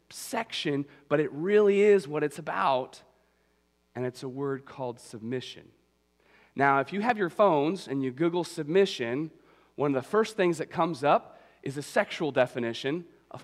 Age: 30-49